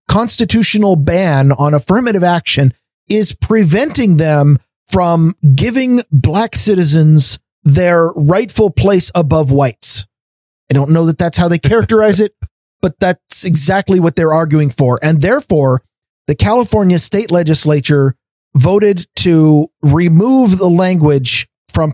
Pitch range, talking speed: 145-185 Hz, 125 wpm